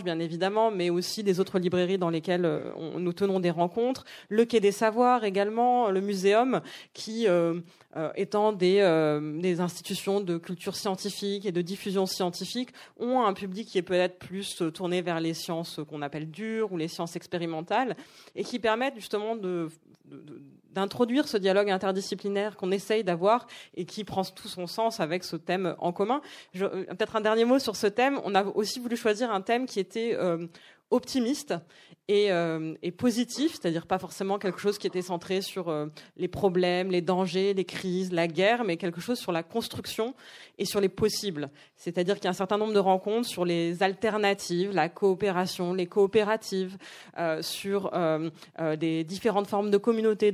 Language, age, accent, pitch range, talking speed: French, 20-39, French, 175-215 Hz, 180 wpm